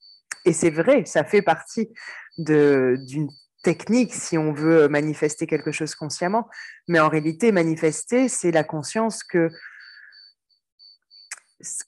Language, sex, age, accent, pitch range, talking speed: French, female, 20-39, French, 160-210 Hz, 125 wpm